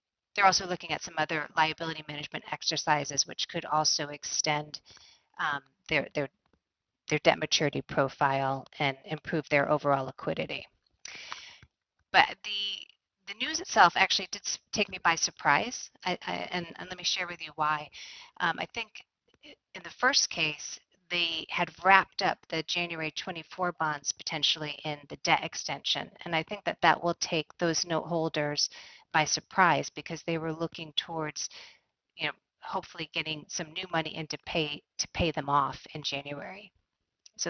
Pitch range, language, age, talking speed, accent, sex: 150-175 Hz, English, 30-49, 160 wpm, American, female